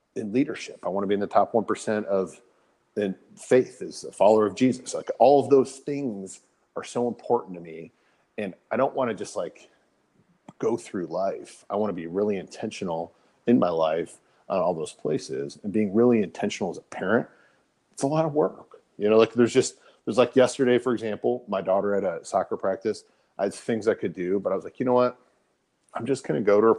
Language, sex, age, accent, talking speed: English, male, 40-59, American, 220 wpm